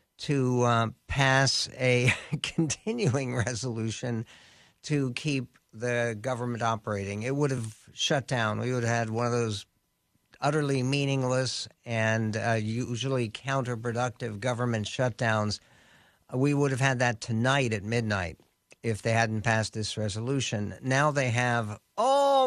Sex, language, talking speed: male, English, 130 wpm